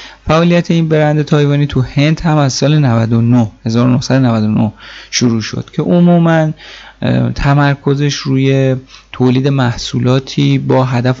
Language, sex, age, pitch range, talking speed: Persian, male, 30-49, 115-145 Hz, 115 wpm